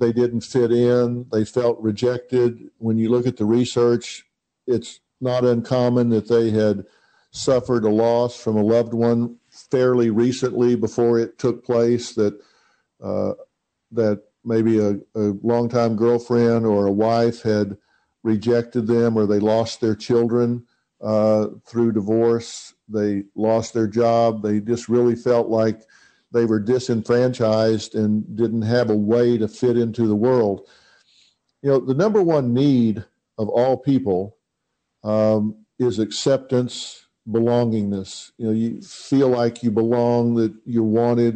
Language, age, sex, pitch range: English, 50-69, male, 110-120 Hz